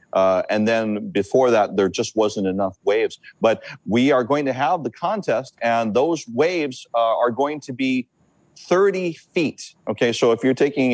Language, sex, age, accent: English, male, 40-59, American